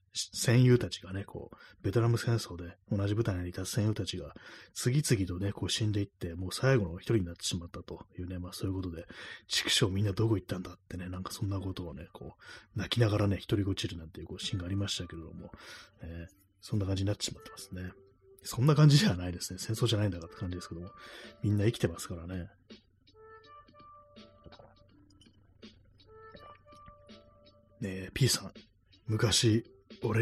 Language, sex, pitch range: Japanese, male, 90-110 Hz